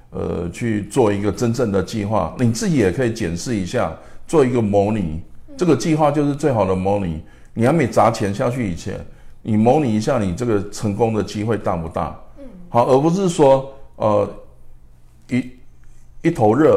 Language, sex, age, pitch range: Chinese, male, 50-69, 95-125 Hz